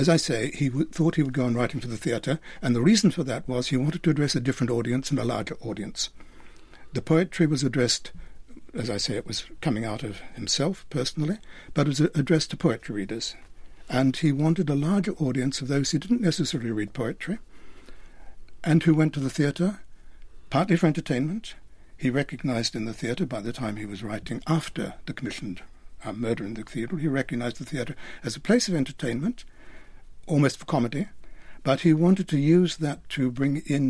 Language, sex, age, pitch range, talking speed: English, male, 60-79, 120-160 Hz, 205 wpm